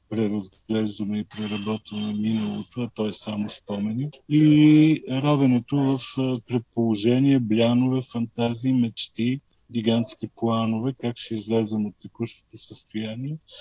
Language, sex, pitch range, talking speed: Bulgarian, male, 100-125 Hz, 105 wpm